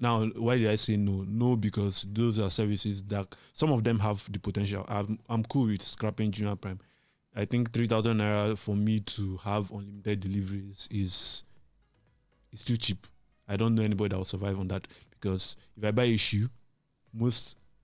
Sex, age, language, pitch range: male, 20-39, English, 100-115 Hz